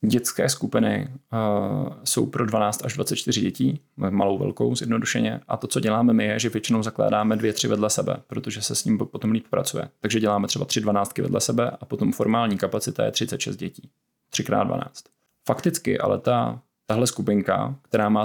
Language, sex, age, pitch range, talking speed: Czech, male, 20-39, 105-115 Hz, 180 wpm